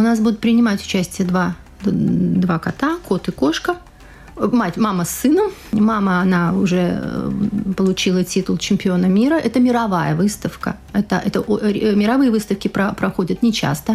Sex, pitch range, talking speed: female, 180-220 Hz, 140 wpm